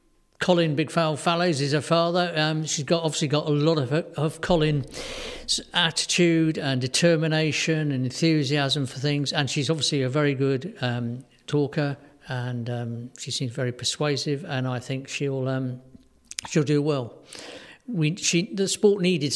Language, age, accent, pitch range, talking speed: English, 50-69, British, 130-155 Hz, 155 wpm